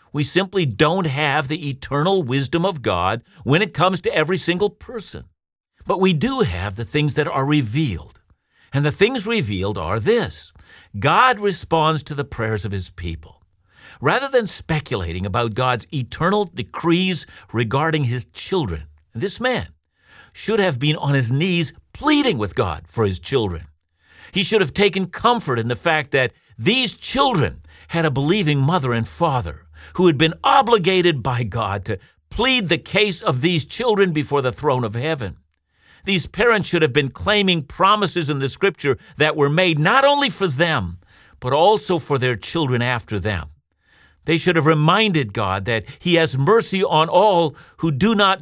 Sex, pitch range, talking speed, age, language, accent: male, 115-180 Hz, 170 wpm, 60-79, English, American